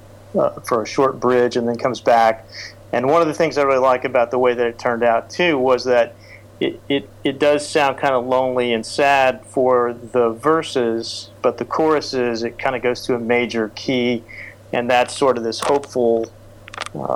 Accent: American